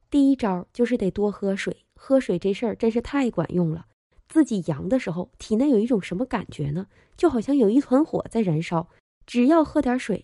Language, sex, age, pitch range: Chinese, female, 20-39, 185-260 Hz